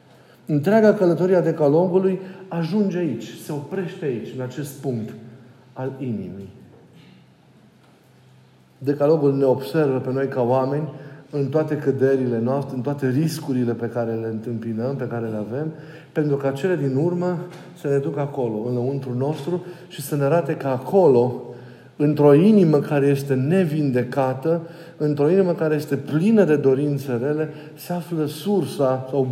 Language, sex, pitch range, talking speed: Romanian, male, 125-160 Hz, 140 wpm